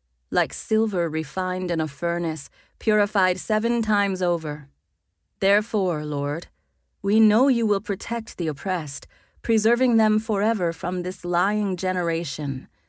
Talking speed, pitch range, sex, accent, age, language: 120 wpm, 145-210 Hz, female, American, 40-59, English